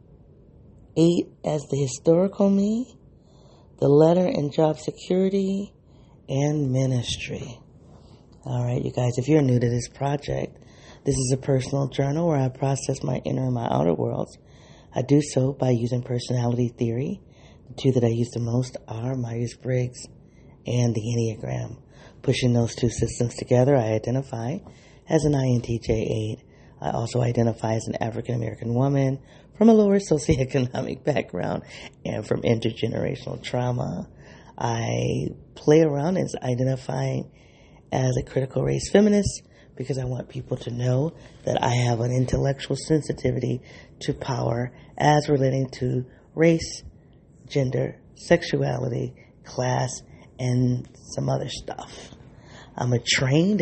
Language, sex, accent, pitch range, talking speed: English, female, American, 120-145 Hz, 135 wpm